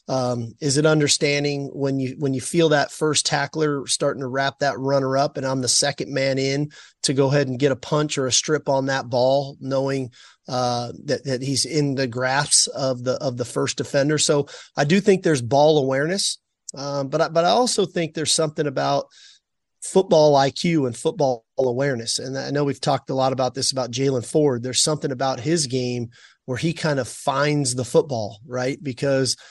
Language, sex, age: English, male, 30-49